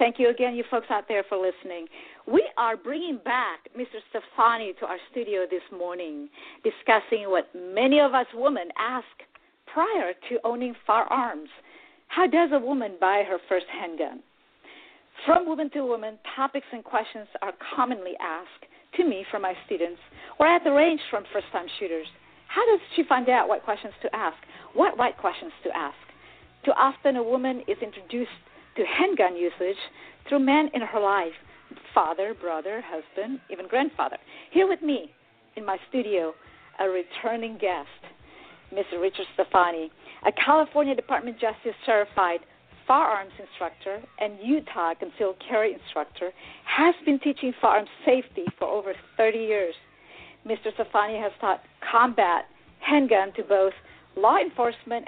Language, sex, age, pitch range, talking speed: English, female, 50-69, 195-285 Hz, 150 wpm